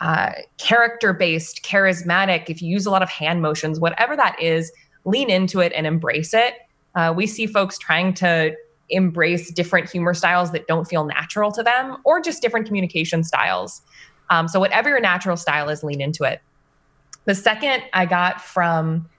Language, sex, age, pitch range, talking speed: English, female, 20-39, 160-195 Hz, 180 wpm